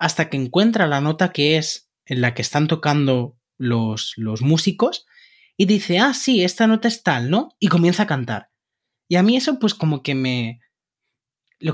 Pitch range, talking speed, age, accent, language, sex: 125-185 Hz, 190 wpm, 20-39, Spanish, Spanish, male